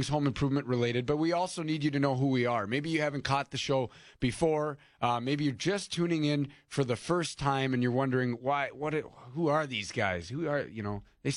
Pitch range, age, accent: 125-150 Hz, 30-49, American